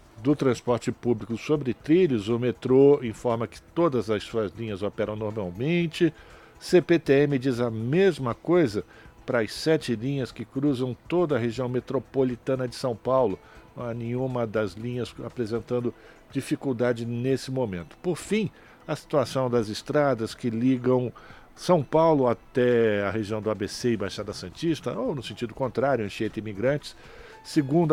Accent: Brazilian